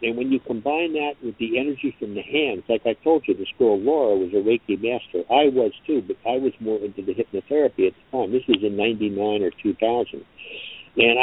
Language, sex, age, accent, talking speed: English, male, 60-79, American, 225 wpm